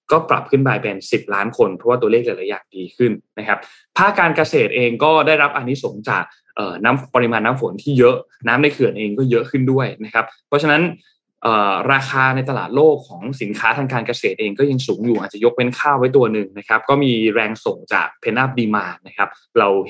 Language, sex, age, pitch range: Thai, male, 20-39, 110-145 Hz